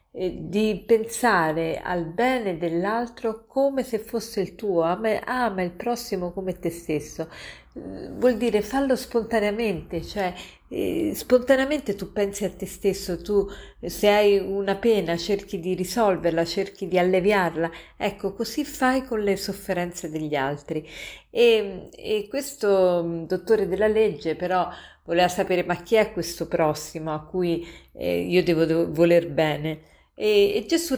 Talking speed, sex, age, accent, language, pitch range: 140 wpm, female, 40-59, native, Italian, 170-205 Hz